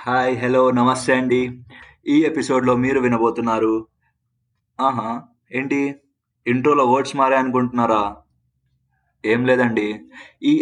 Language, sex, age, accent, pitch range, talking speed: Telugu, male, 20-39, native, 115-150 Hz, 90 wpm